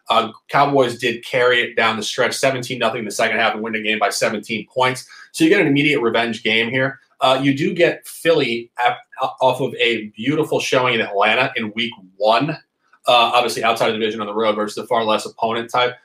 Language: English